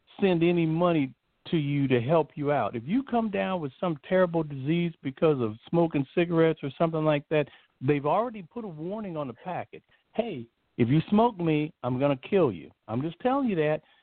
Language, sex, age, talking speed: English, male, 50-69, 205 wpm